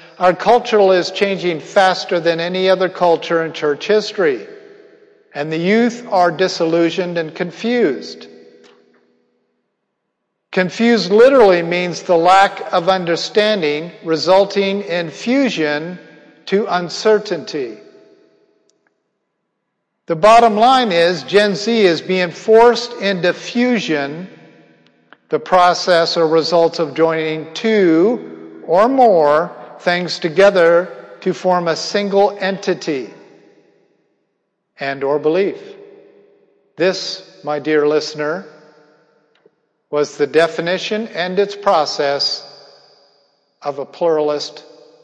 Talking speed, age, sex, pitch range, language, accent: 100 wpm, 50-69, male, 155-200 Hz, English, American